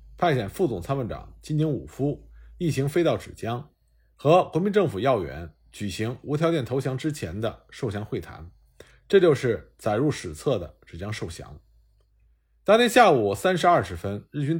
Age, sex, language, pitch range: 50-69, male, Chinese, 100-165 Hz